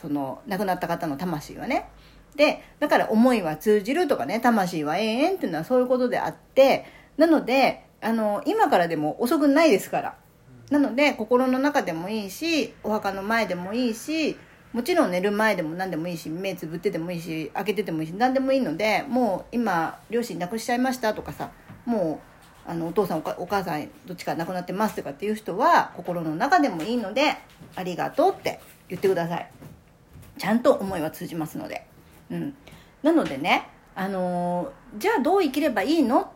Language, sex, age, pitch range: Japanese, female, 40-59, 180-270 Hz